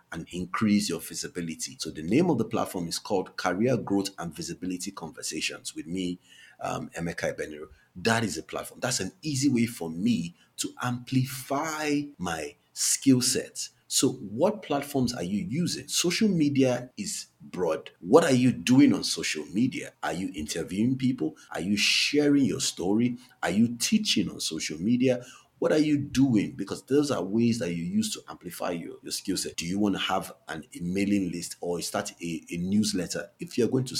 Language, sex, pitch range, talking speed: English, male, 100-140 Hz, 185 wpm